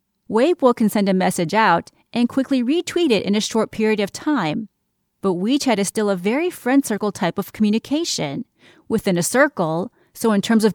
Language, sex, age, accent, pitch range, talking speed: English, female, 30-49, American, 185-265 Hz, 185 wpm